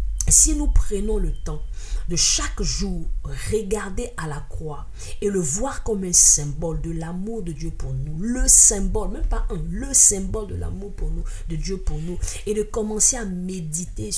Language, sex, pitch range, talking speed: French, female, 145-185 Hz, 185 wpm